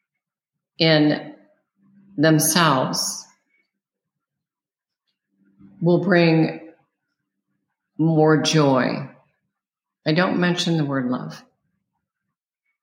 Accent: American